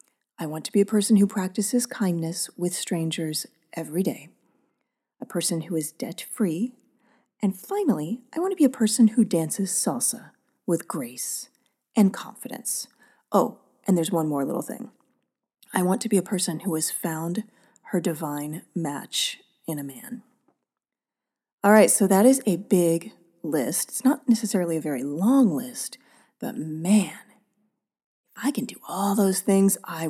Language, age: English, 30-49